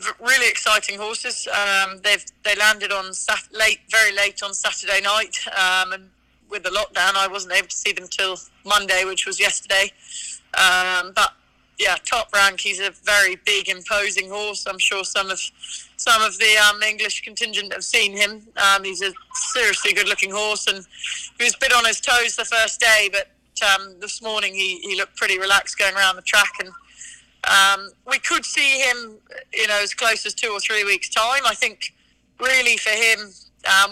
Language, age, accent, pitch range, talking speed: English, 20-39, British, 195-215 Hz, 190 wpm